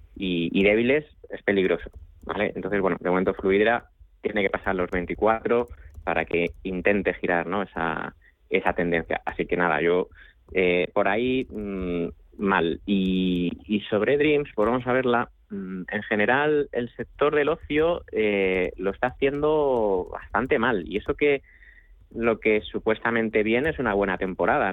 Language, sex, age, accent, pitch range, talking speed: Spanish, male, 20-39, Spanish, 85-105 Hz, 155 wpm